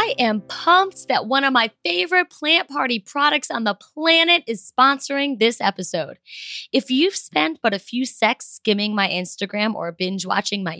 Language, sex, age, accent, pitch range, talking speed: English, female, 20-39, American, 195-285 Hz, 180 wpm